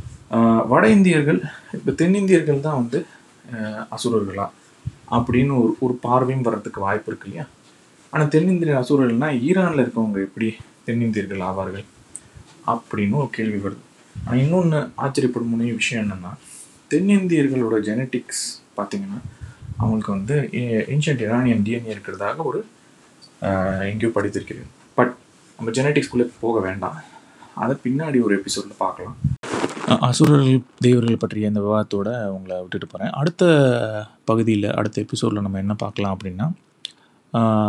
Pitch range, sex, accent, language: 105-130 Hz, male, native, Tamil